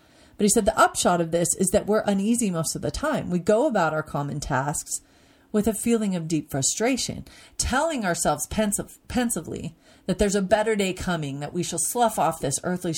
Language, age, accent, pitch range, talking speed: English, 40-59, American, 150-215 Hz, 200 wpm